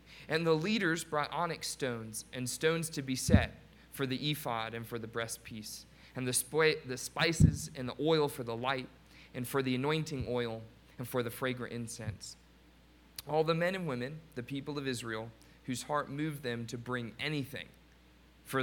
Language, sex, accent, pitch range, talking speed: English, male, American, 110-135 Hz, 180 wpm